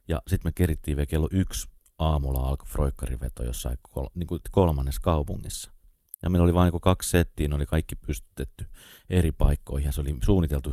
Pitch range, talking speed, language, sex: 75-100 Hz, 180 wpm, Finnish, male